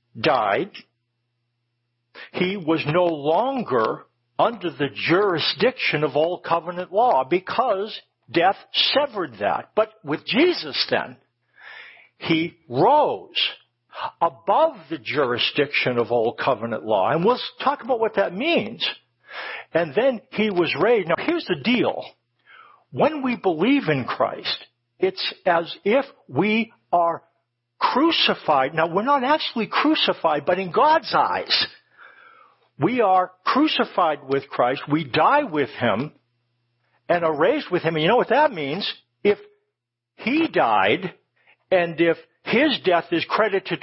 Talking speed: 130 wpm